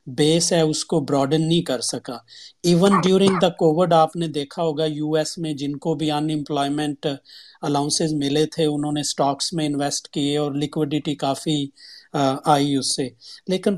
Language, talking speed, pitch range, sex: Urdu, 170 wpm, 150-175 Hz, male